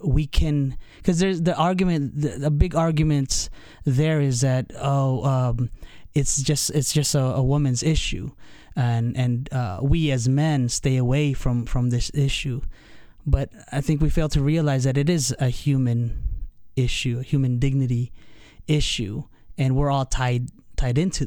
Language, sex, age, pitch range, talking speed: English, male, 20-39, 130-155 Hz, 165 wpm